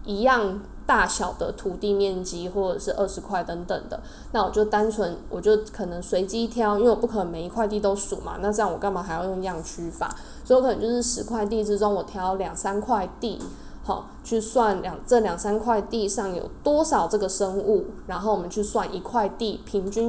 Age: 10-29